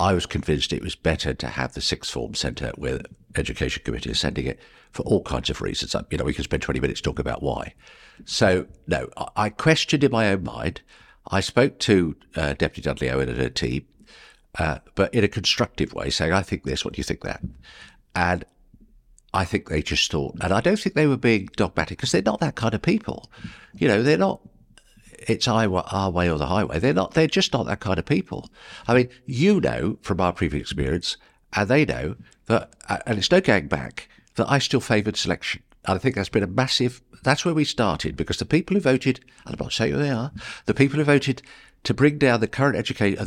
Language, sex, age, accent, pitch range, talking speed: English, male, 50-69, British, 85-130 Hz, 225 wpm